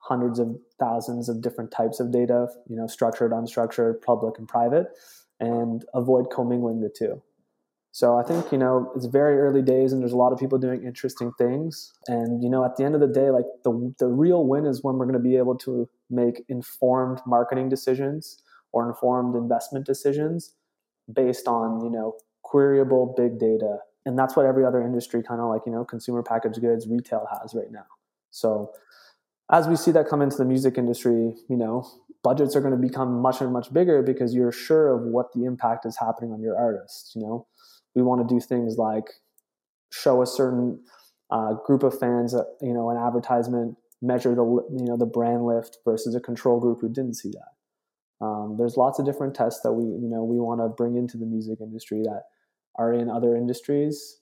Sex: male